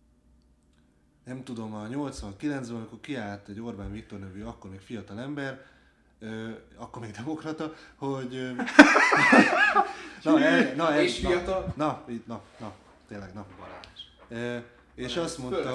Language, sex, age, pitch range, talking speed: Hungarian, male, 20-39, 110-140 Hz, 115 wpm